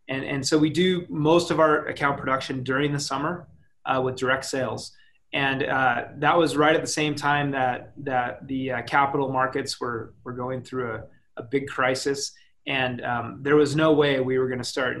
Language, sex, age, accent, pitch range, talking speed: English, male, 30-49, American, 130-155 Hz, 205 wpm